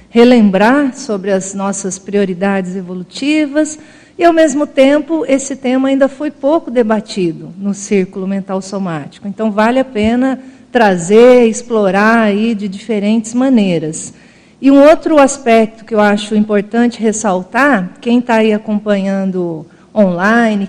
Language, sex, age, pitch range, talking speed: Portuguese, female, 50-69, 200-255 Hz, 130 wpm